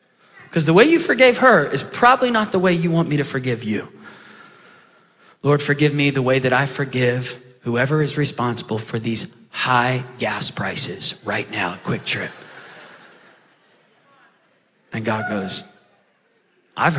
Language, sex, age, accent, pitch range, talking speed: English, male, 30-49, American, 135-190 Hz, 145 wpm